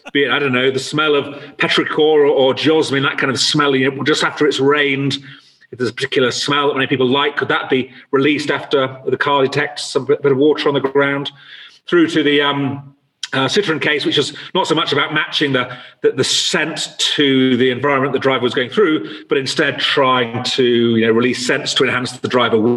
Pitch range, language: 125-155 Hz, English